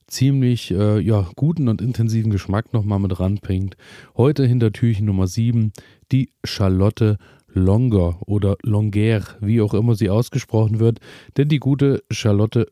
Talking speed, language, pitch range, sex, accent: 140 wpm, German, 105-120 Hz, male, German